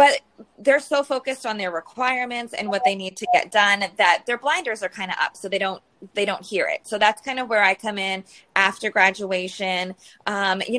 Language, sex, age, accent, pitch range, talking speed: English, female, 20-39, American, 185-240 Hz, 225 wpm